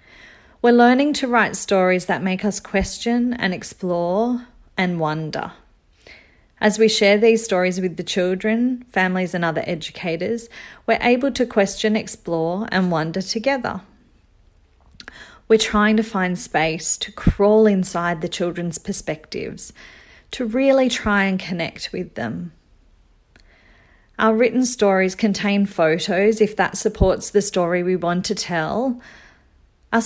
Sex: female